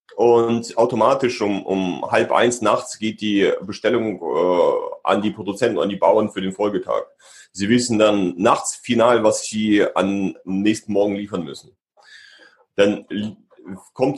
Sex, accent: male, German